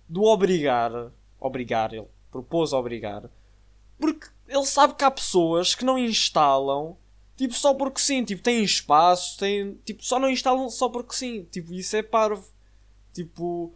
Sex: male